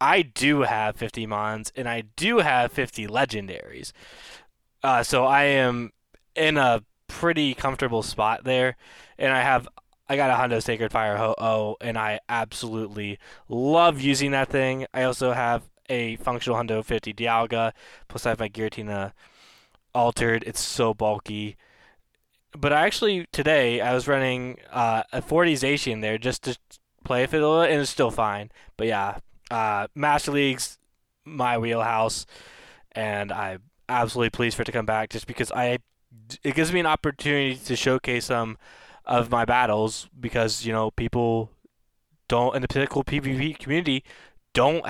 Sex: male